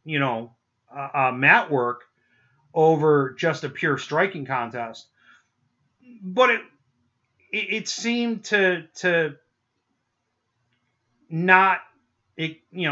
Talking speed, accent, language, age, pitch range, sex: 100 wpm, American, English, 30-49, 120-155 Hz, male